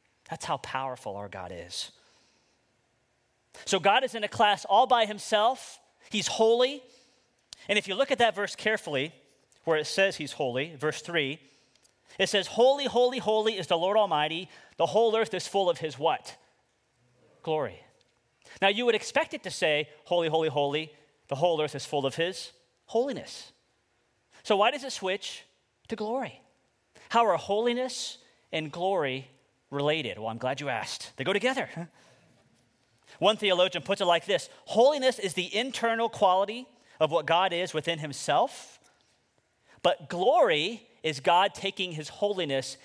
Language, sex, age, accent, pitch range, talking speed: English, male, 30-49, American, 150-225 Hz, 160 wpm